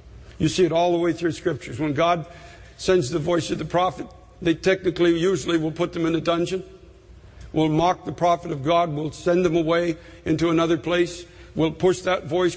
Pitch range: 155-180 Hz